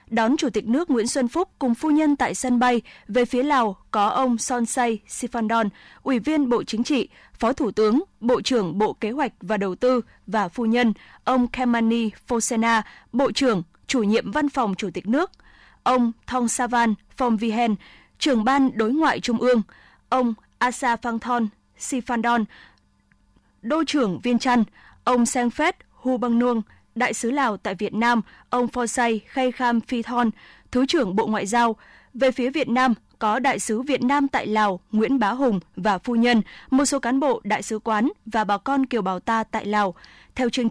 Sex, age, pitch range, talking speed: female, 20-39, 225-265 Hz, 185 wpm